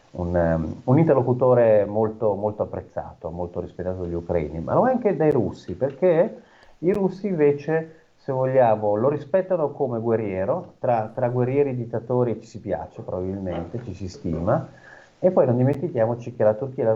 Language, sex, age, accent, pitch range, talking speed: Italian, male, 40-59, native, 90-125 Hz, 170 wpm